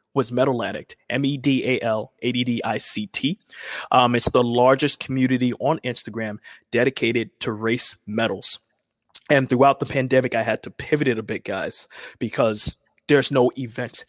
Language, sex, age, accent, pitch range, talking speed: English, male, 20-39, American, 115-140 Hz, 130 wpm